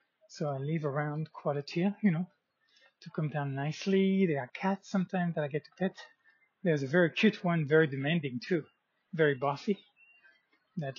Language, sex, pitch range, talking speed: English, male, 145-180 Hz, 175 wpm